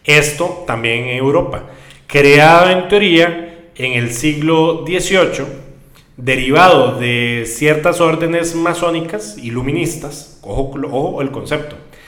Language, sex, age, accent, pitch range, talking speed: Spanish, male, 30-49, Mexican, 135-175 Hz, 105 wpm